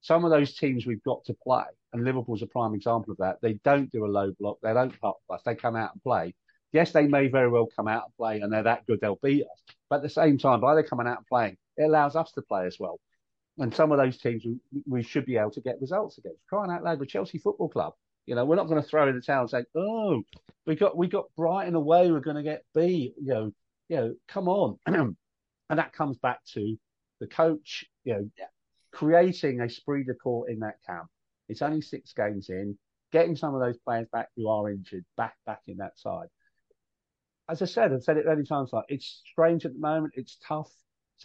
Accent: British